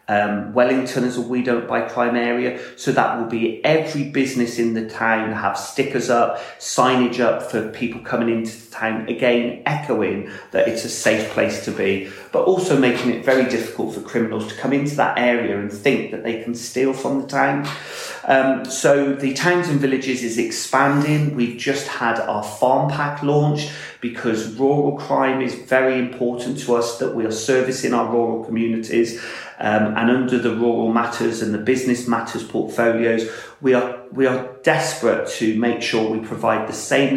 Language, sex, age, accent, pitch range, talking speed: English, male, 30-49, British, 110-130 Hz, 180 wpm